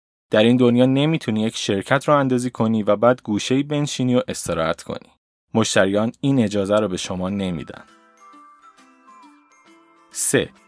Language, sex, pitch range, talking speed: Persian, male, 90-135 Hz, 135 wpm